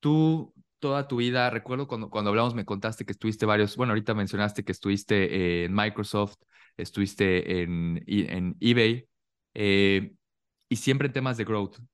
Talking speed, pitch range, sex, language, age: 160 wpm, 100-125 Hz, male, English, 20-39